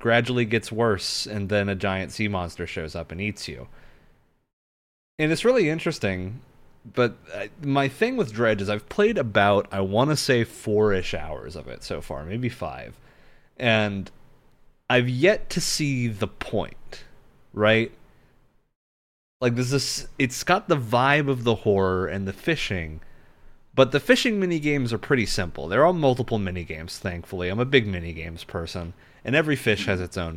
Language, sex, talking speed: English, male, 165 wpm